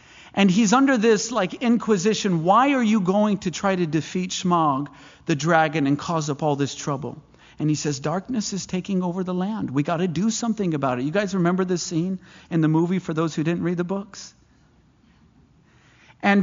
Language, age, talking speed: English, 50-69, 200 wpm